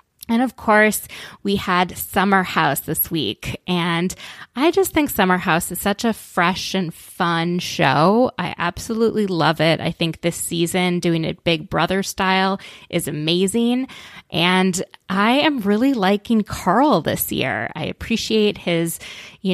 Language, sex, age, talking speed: English, female, 20-39, 150 wpm